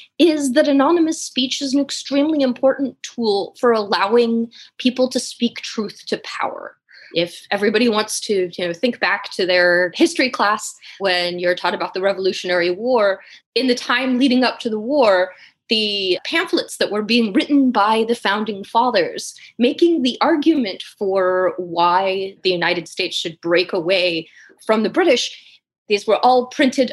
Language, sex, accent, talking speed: English, female, American, 155 wpm